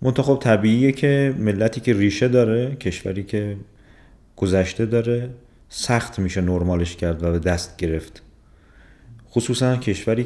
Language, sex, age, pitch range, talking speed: Persian, male, 30-49, 90-115 Hz, 125 wpm